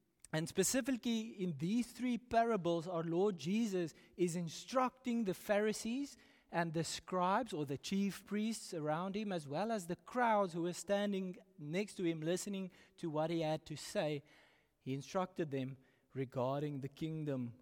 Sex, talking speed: male, 155 wpm